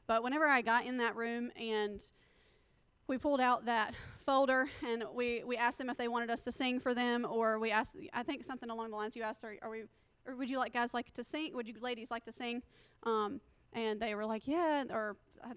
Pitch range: 230-265 Hz